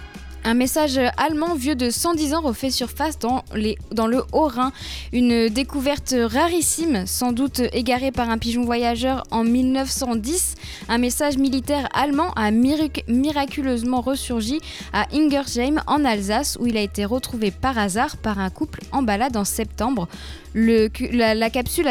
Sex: female